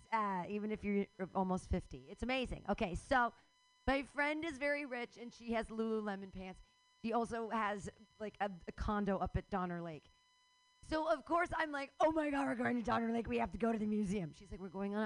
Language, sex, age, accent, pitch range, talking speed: English, female, 40-59, American, 220-340 Hz, 225 wpm